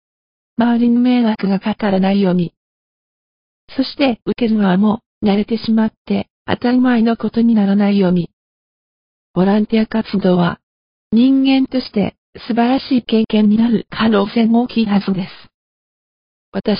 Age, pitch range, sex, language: 50-69, 200-235 Hz, female, Japanese